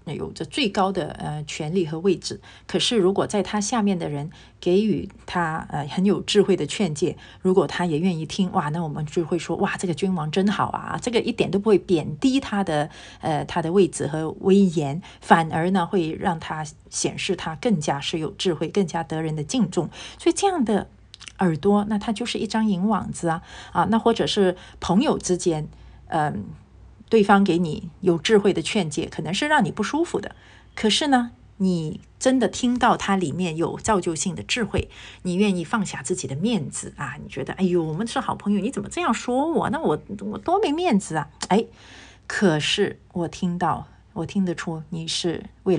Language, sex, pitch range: Chinese, female, 160-205 Hz